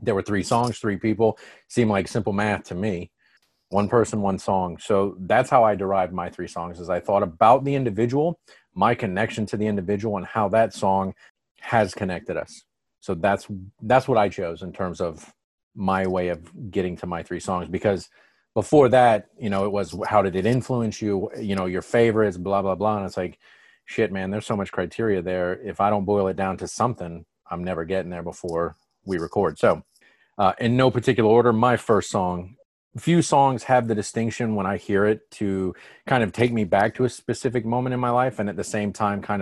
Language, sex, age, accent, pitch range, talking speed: English, male, 30-49, American, 95-115 Hz, 215 wpm